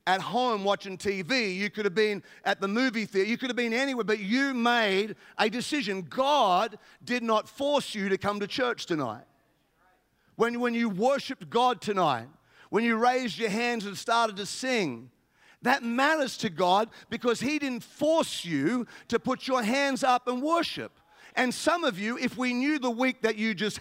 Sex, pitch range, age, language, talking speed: male, 210-255 Hz, 50-69, English, 190 wpm